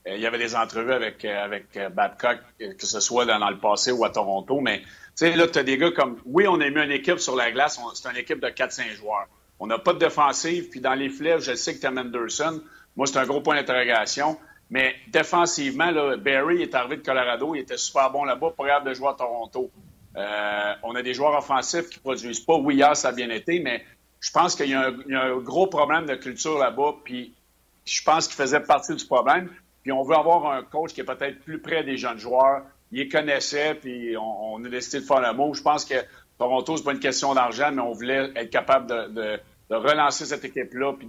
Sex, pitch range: male, 125-150 Hz